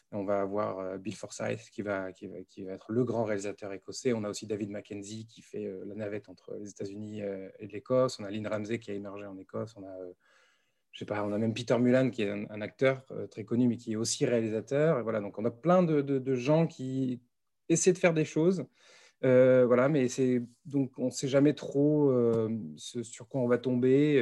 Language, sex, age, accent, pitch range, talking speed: French, male, 20-39, French, 105-130 Hz, 230 wpm